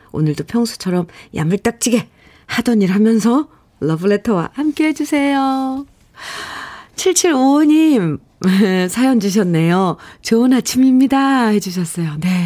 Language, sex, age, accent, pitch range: Korean, female, 50-69, native, 165-245 Hz